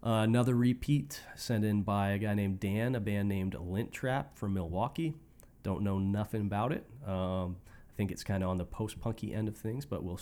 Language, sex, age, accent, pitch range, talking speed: English, male, 30-49, American, 95-115 Hz, 215 wpm